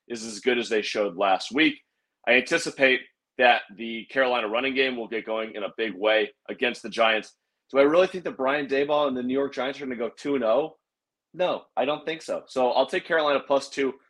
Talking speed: 225 wpm